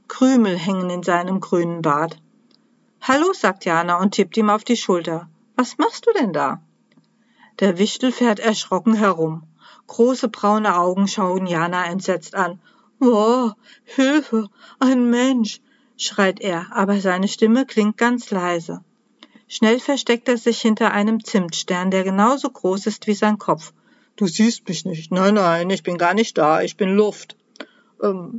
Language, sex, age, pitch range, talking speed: German, female, 50-69, 190-240 Hz, 155 wpm